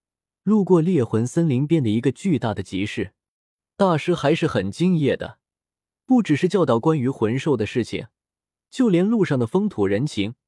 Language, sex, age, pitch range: Chinese, male, 20-39, 110-160 Hz